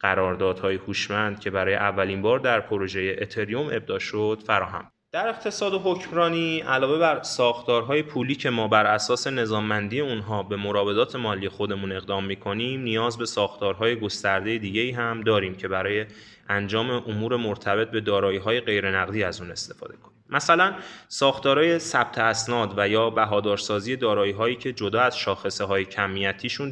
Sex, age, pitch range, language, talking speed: male, 20-39, 100-125 Hz, Persian, 150 wpm